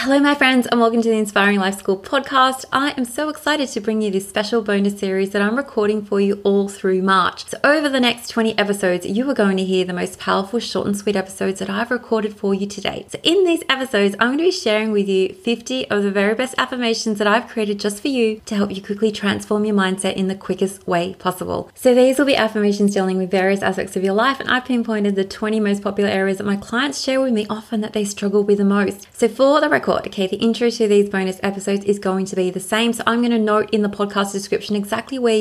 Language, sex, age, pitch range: English, female, 20-39, 195-235 Hz